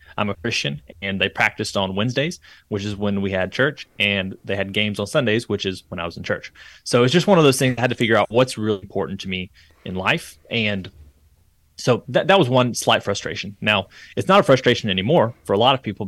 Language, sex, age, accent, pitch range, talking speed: English, male, 30-49, American, 100-125 Hz, 245 wpm